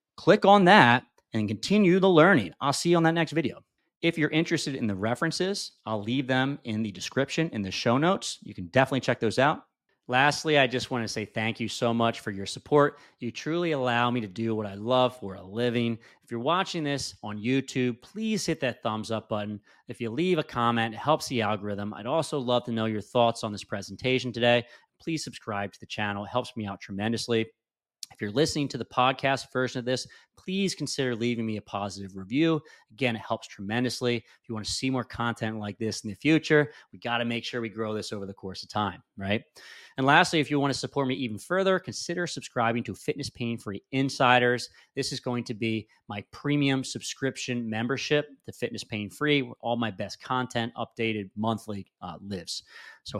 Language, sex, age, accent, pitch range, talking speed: English, male, 30-49, American, 110-140 Hz, 210 wpm